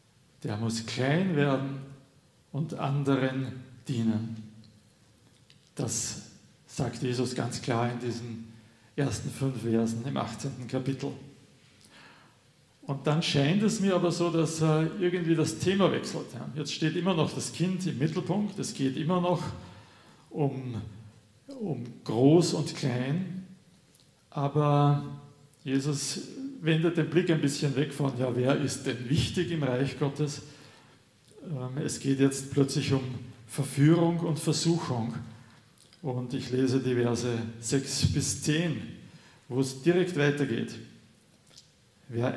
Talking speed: 125 wpm